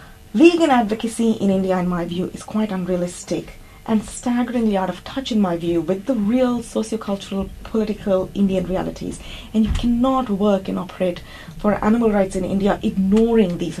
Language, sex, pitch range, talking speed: English, female, 185-255 Hz, 165 wpm